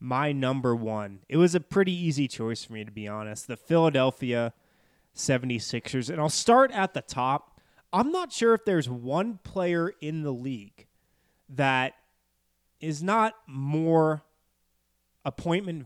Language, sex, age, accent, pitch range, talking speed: English, male, 20-39, American, 115-160 Hz, 145 wpm